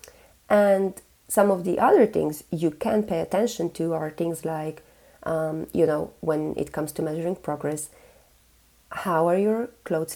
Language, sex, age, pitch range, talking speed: English, female, 30-49, 155-185 Hz, 160 wpm